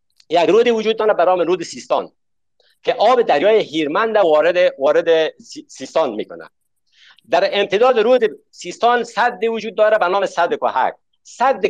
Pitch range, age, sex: 155-235 Hz, 50-69, male